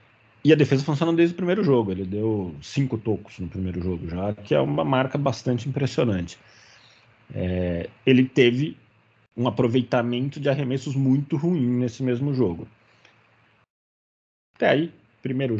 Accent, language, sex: Brazilian, Portuguese, male